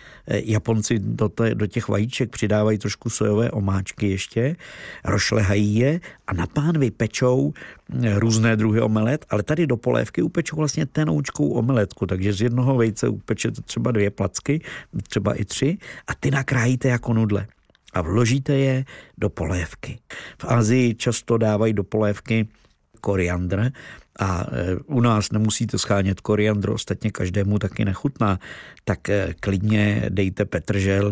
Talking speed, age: 130 wpm, 50-69